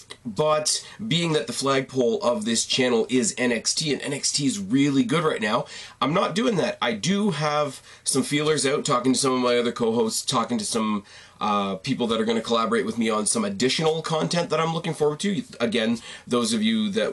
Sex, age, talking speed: male, 30-49, 210 wpm